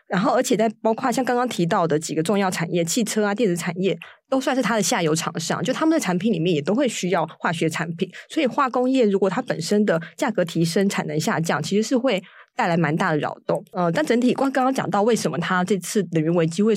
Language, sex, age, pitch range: Chinese, female, 20-39, 170-215 Hz